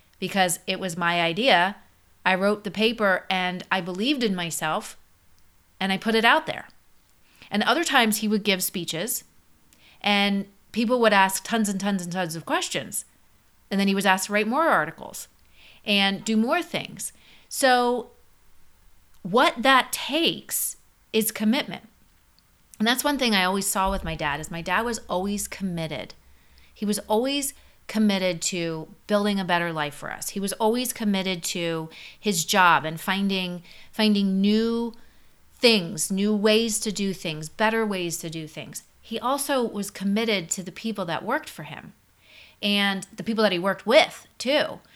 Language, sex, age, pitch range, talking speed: English, female, 30-49, 175-220 Hz, 165 wpm